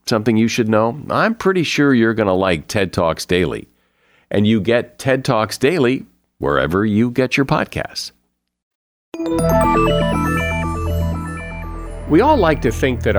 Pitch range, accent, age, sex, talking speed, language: 100-155 Hz, American, 50-69, male, 140 wpm, English